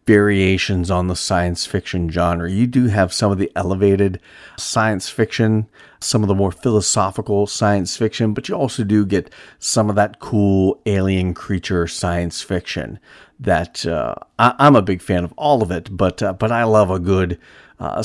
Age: 40-59